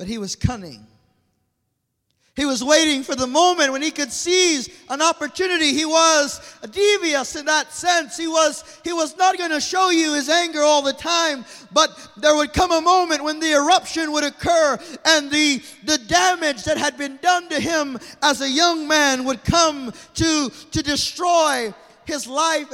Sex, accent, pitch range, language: male, American, 190-295 Hz, English